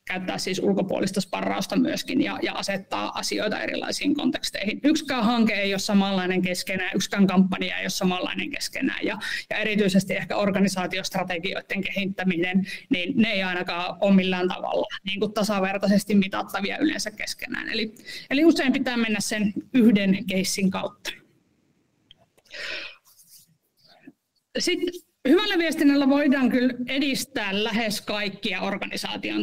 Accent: native